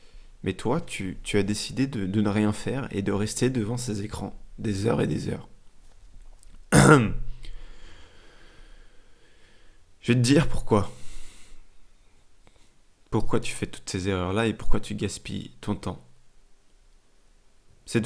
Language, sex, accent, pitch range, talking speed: French, male, French, 100-125 Hz, 135 wpm